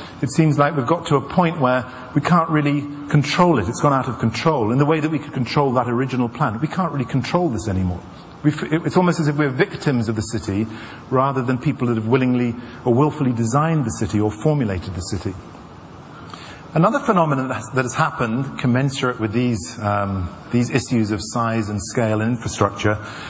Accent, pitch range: British, 115-160 Hz